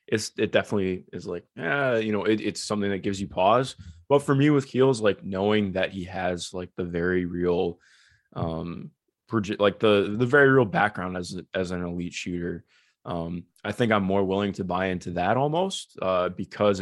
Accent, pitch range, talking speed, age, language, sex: American, 90-105 Hz, 195 wpm, 20-39, English, male